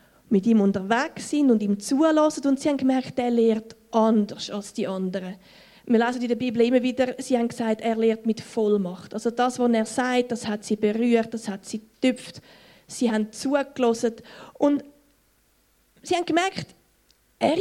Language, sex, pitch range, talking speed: German, female, 215-275 Hz, 175 wpm